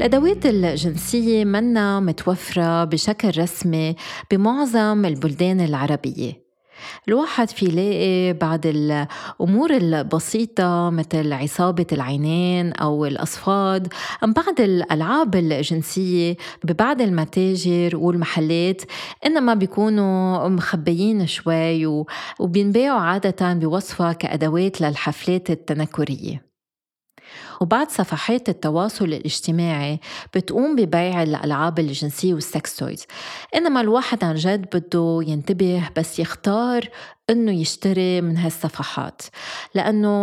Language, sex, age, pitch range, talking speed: Arabic, female, 30-49, 165-205 Hz, 90 wpm